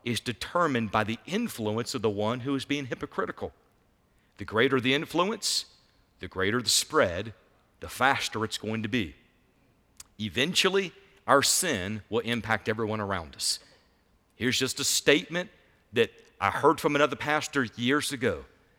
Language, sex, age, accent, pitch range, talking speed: English, male, 50-69, American, 100-140 Hz, 145 wpm